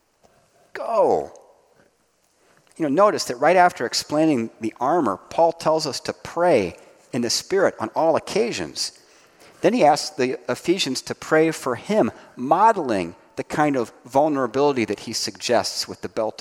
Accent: American